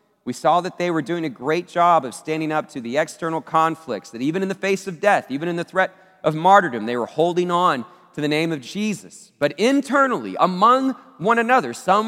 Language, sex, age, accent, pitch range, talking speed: English, male, 30-49, American, 155-205 Hz, 220 wpm